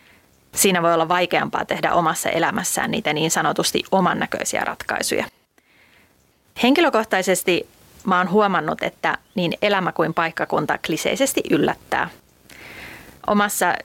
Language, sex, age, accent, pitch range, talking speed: Finnish, female, 30-49, native, 165-205 Hz, 105 wpm